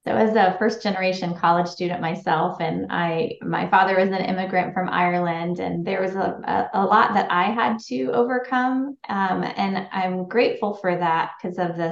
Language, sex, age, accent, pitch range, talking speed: English, female, 20-39, American, 170-200 Hz, 180 wpm